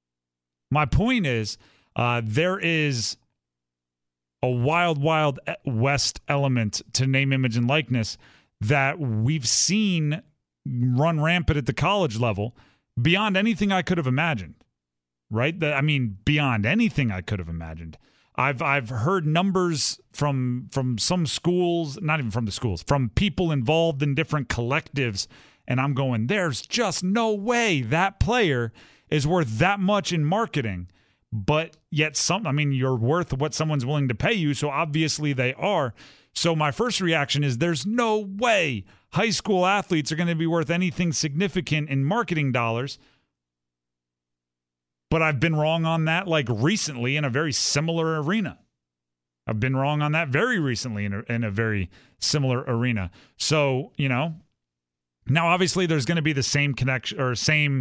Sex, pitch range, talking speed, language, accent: male, 115-165 Hz, 160 wpm, English, American